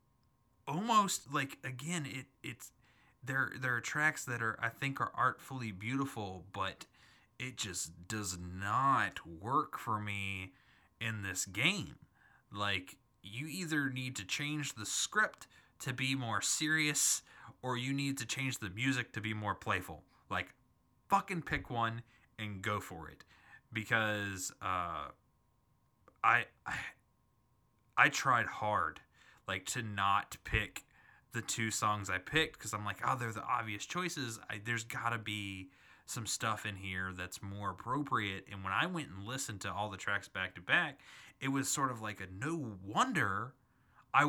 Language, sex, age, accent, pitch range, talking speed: English, male, 20-39, American, 105-140 Hz, 155 wpm